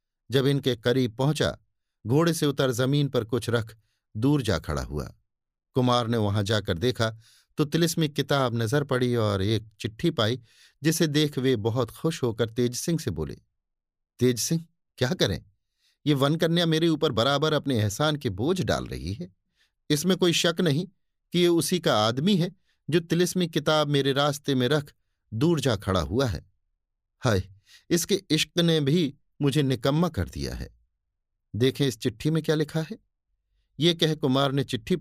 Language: Hindi